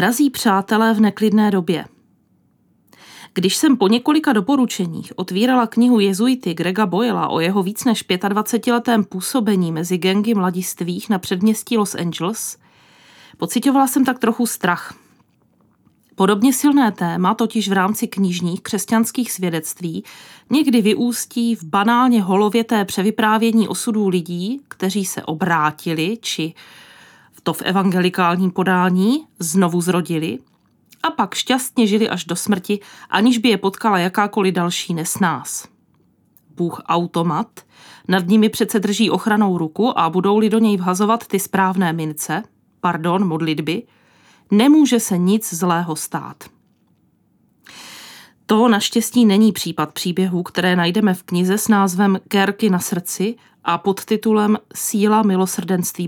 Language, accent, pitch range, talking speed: Czech, native, 180-225 Hz, 125 wpm